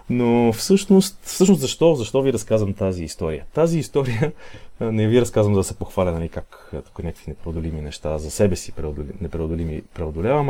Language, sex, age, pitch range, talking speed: Bulgarian, male, 30-49, 95-130 Hz, 155 wpm